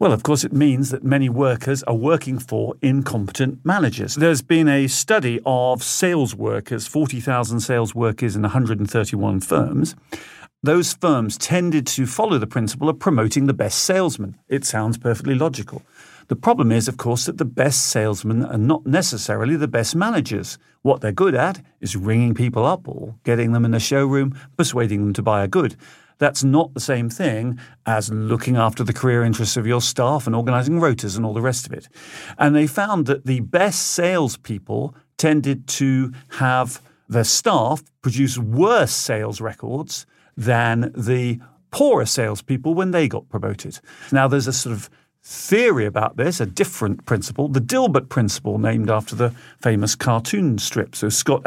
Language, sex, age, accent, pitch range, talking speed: English, male, 50-69, British, 115-140 Hz, 170 wpm